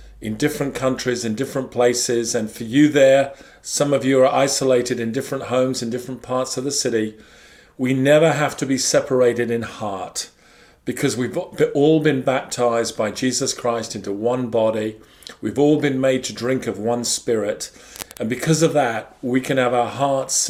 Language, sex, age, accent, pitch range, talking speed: Dutch, male, 40-59, British, 120-145 Hz, 180 wpm